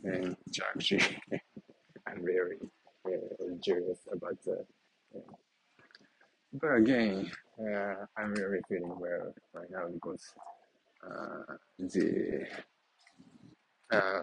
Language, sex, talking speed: English, male, 90 wpm